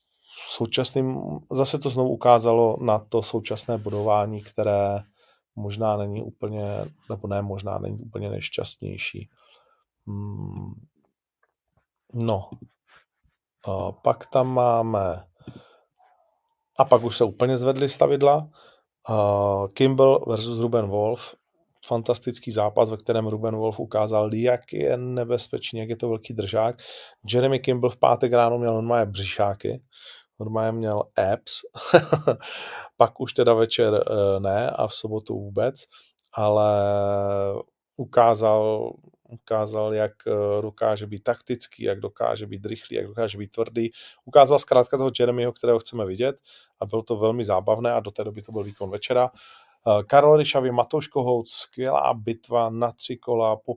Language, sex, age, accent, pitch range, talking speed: Czech, male, 30-49, native, 105-125 Hz, 130 wpm